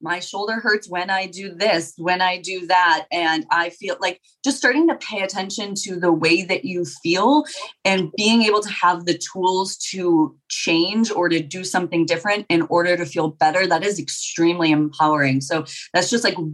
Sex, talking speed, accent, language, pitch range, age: female, 190 wpm, American, English, 160-195 Hz, 20-39